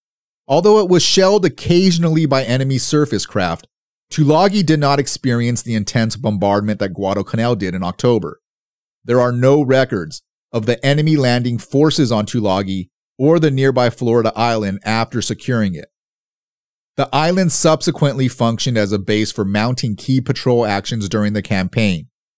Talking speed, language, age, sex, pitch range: 145 wpm, English, 30-49, male, 105-140 Hz